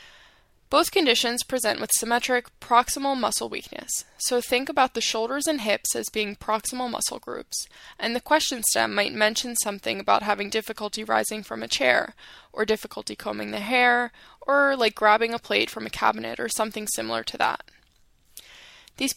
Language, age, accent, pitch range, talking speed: English, 10-29, American, 210-260 Hz, 165 wpm